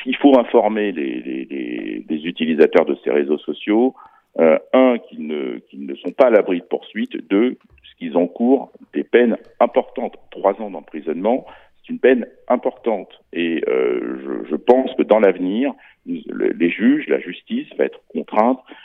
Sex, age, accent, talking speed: male, 50-69, French, 170 wpm